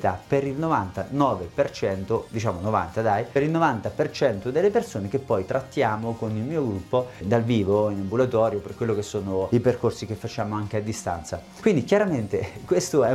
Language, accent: Italian, native